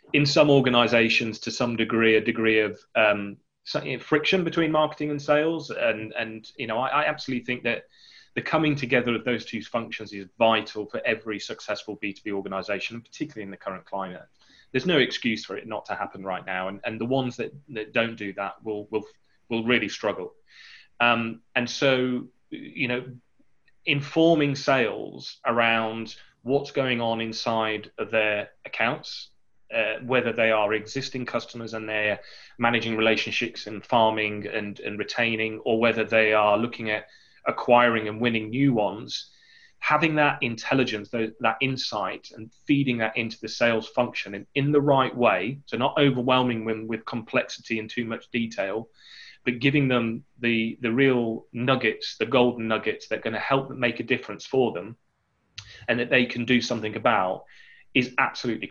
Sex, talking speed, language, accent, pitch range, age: male, 170 wpm, English, British, 110-130 Hz, 30-49